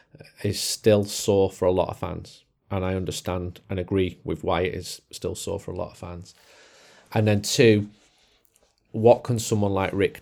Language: English